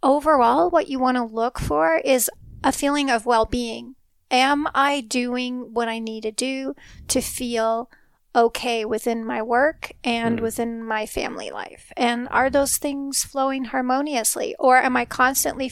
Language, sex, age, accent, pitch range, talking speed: English, female, 40-59, American, 230-265 Hz, 155 wpm